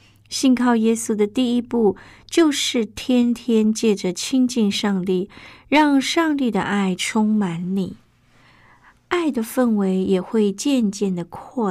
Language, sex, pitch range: Chinese, female, 185-240 Hz